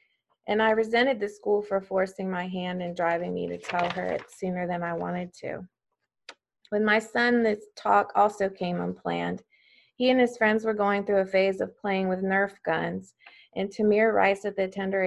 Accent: American